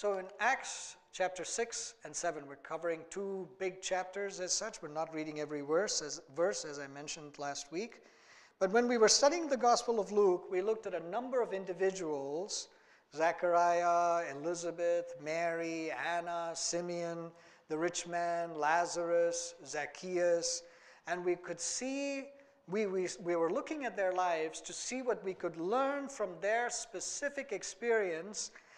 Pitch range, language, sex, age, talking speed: 160-200 Hz, English, male, 50-69, 150 wpm